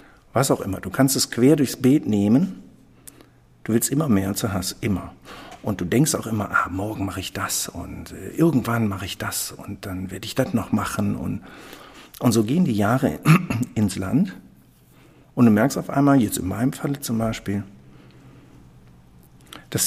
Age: 60-79